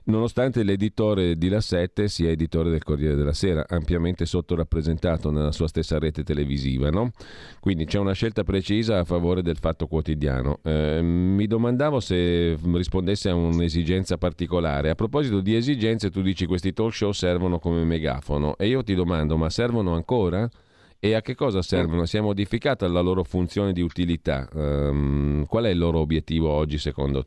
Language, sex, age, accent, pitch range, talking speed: Italian, male, 40-59, native, 80-100 Hz, 170 wpm